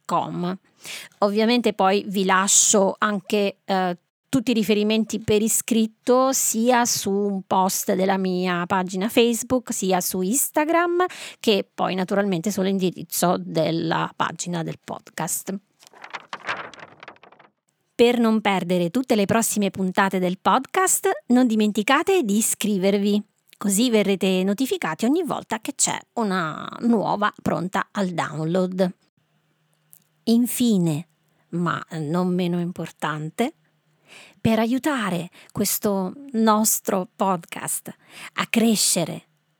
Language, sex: Italian, female